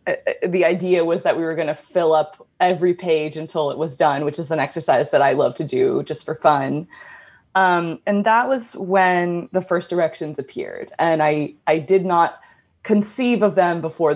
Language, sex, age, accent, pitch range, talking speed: English, female, 20-39, American, 160-200 Hz, 195 wpm